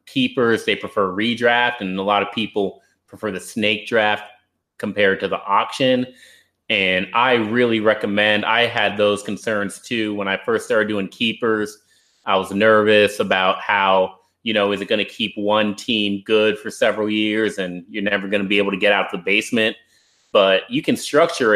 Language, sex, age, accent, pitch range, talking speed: English, male, 30-49, American, 100-125 Hz, 185 wpm